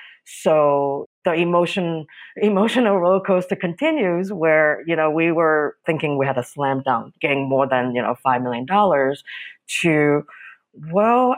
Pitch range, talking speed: 140-205 Hz, 150 wpm